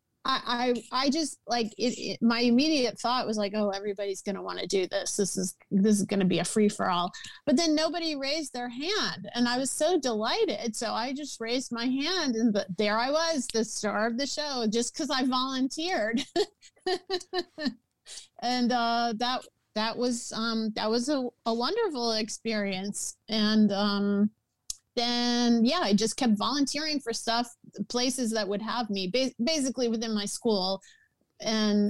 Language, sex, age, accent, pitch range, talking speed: English, female, 30-49, American, 200-245 Hz, 175 wpm